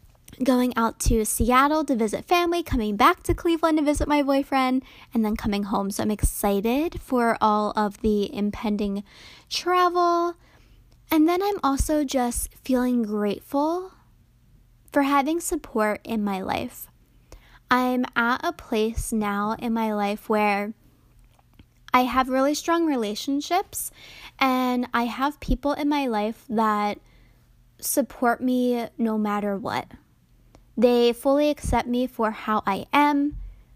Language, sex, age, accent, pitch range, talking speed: English, female, 10-29, American, 215-275 Hz, 135 wpm